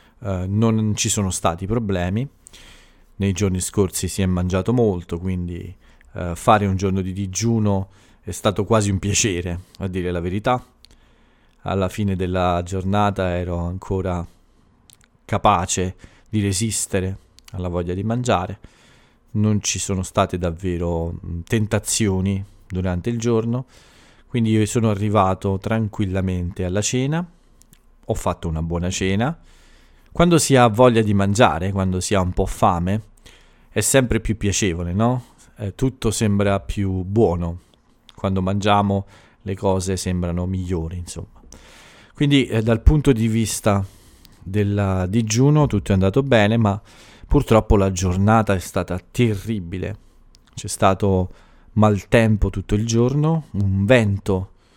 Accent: native